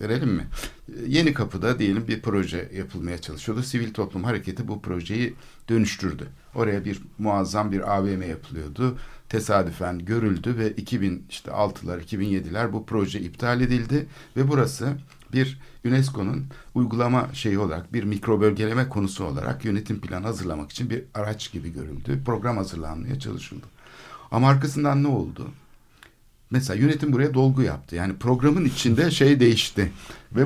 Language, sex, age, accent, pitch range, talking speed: Turkish, male, 60-79, native, 100-135 Hz, 140 wpm